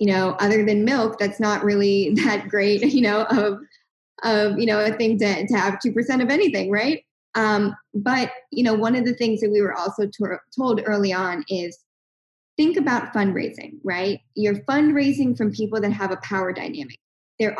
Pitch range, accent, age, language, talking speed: 200-235 Hz, American, 10-29, English, 190 wpm